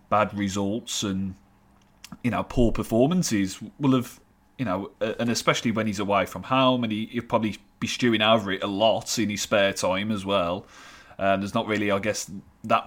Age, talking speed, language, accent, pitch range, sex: 30-49, 190 wpm, English, British, 100-130 Hz, male